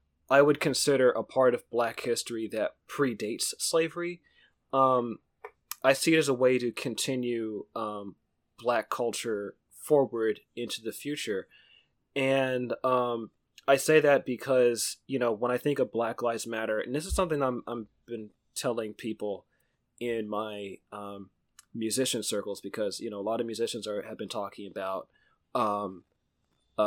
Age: 20-39